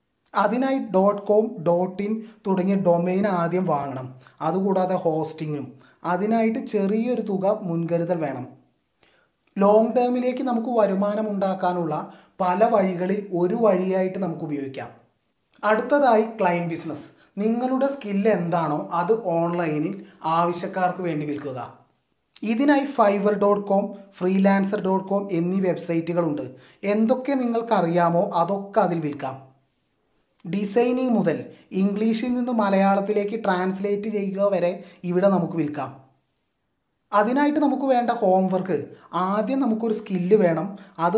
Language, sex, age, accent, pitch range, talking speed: Malayalam, male, 30-49, native, 170-215 Hz, 100 wpm